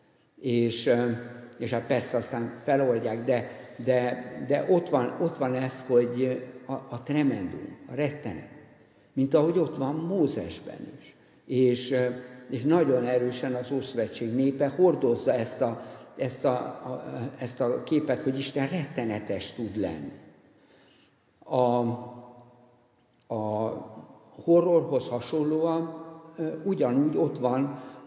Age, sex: 60-79, male